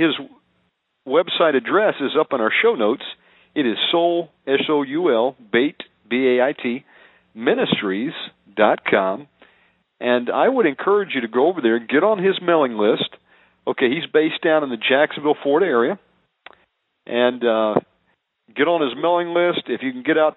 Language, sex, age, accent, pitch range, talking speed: English, male, 50-69, American, 125-165 Hz, 155 wpm